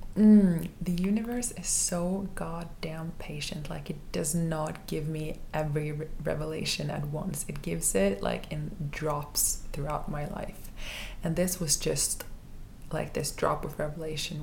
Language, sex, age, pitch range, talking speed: English, female, 20-39, 145-165 Hz, 150 wpm